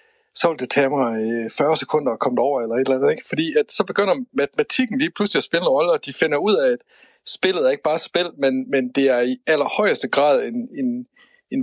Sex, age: male, 60-79